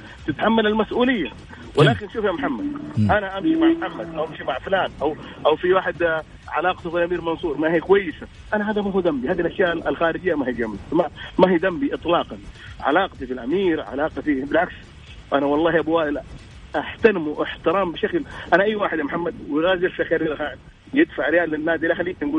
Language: English